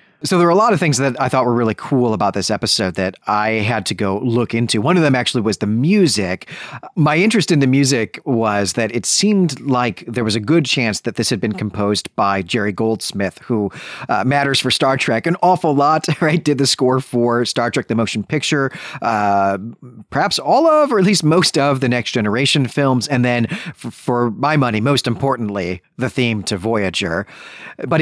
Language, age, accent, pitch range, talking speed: English, 40-59, American, 110-150 Hz, 210 wpm